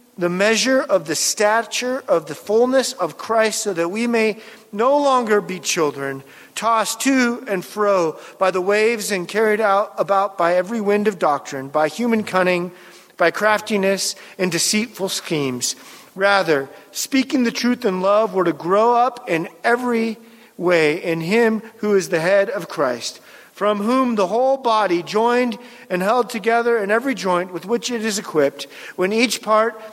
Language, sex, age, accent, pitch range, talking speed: English, male, 40-59, American, 180-225 Hz, 165 wpm